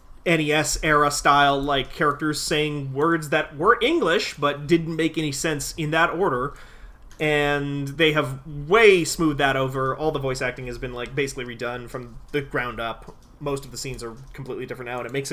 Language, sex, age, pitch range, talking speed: English, male, 30-49, 125-150 Hz, 190 wpm